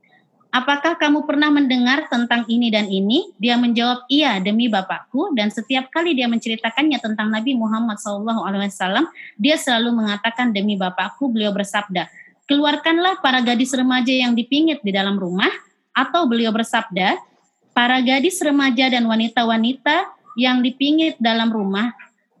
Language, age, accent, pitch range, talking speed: Indonesian, 20-39, native, 215-275 Hz, 135 wpm